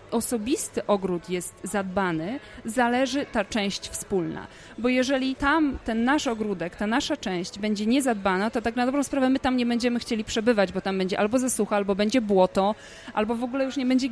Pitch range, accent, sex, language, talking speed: 195-255 Hz, native, female, Polish, 185 wpm